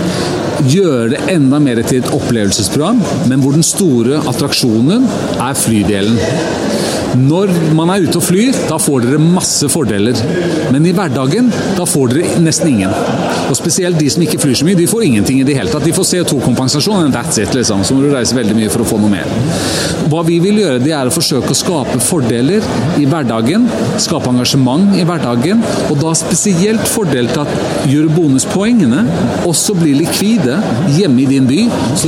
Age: 40-59